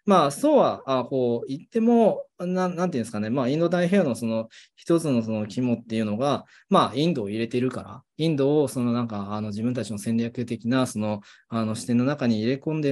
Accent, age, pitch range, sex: native, 20-39, 115-165 Hz, male